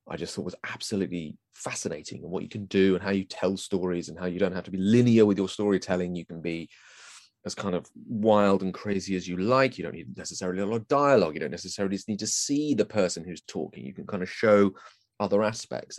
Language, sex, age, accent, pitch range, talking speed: English, male, 30-49, British, 90-125 Hz, 240 wpm